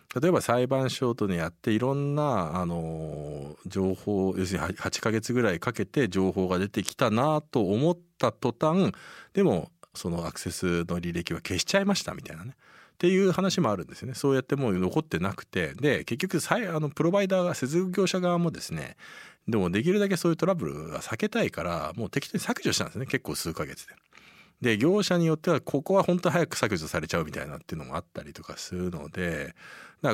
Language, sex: Japanese, male